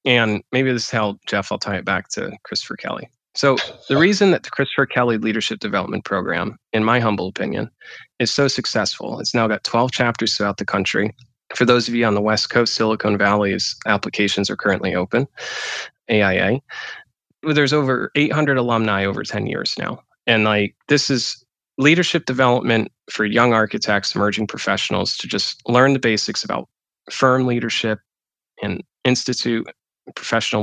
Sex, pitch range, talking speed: male, 110-145 Hz, 165 wpm